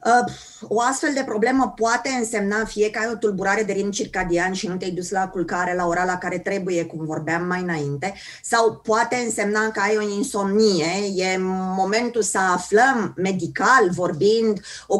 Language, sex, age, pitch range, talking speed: Romanian, female, 20-39, 195-235 Hz, 170 wpm